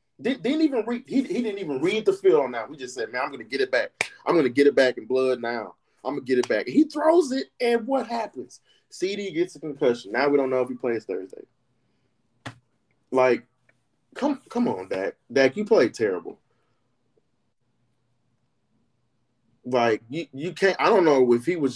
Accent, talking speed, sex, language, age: American, 195 wpm, male, English, 30-49